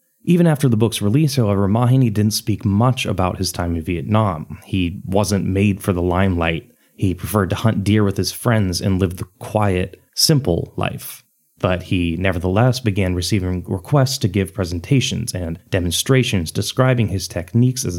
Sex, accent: male, American